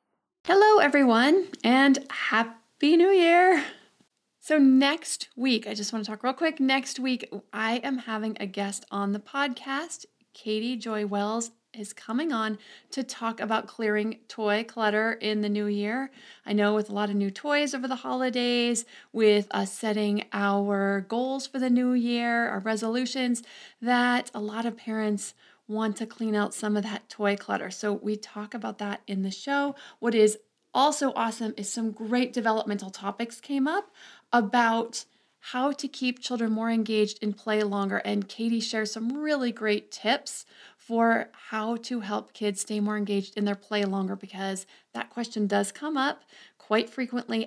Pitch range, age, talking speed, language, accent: 210-260 Hz, 30-49, 170 wpm, English, American